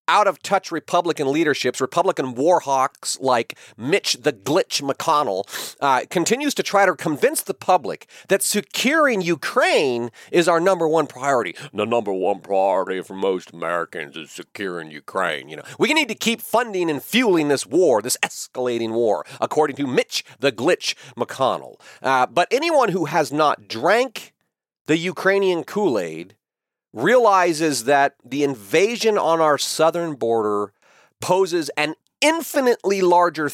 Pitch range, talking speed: 145-210 Hz, 140 wpm